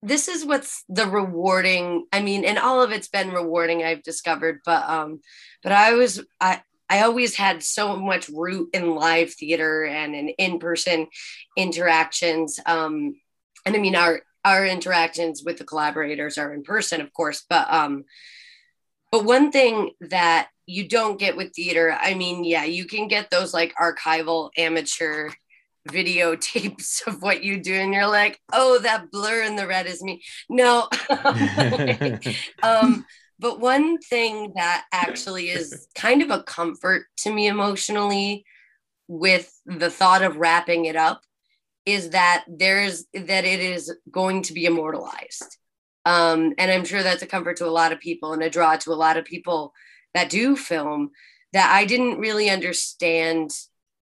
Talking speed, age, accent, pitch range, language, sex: 165 wpm, 30-49, American, 165-205 Hz, English, female